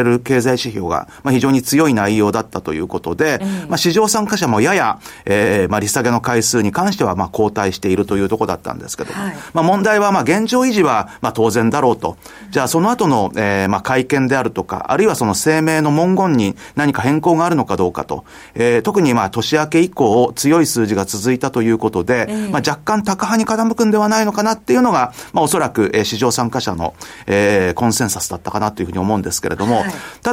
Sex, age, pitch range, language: male, 40-59, 105-175 Hz, Japanese